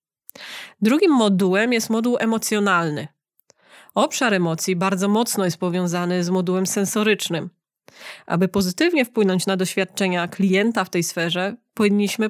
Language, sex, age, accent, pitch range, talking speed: Polish, female, 20-39, native, 185-230 Hz, 115 wpm